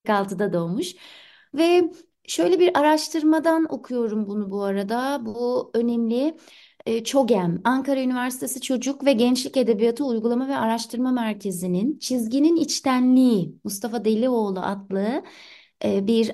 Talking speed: 105 wpm